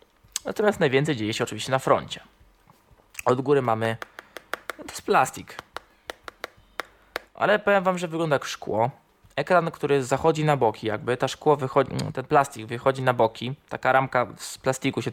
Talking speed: 160 wpm